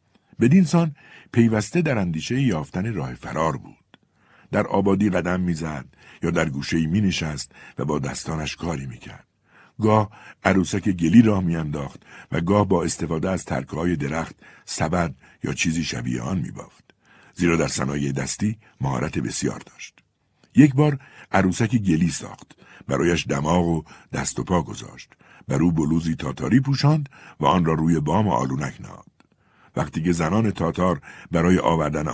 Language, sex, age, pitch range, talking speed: Persian, male, 60-79, 80-125 Hz, 145 wpm